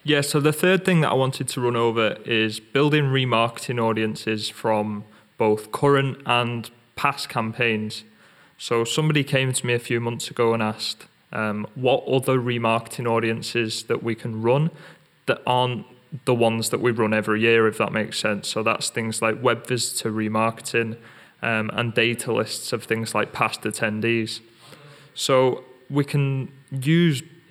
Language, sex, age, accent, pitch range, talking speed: English, male, 20-39, British, 115-135 Hz, 160 wpm